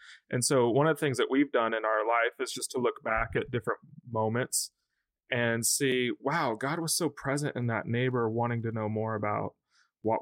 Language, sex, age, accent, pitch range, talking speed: English, male, 20-39, American, 105-130 Hz, 210 wpm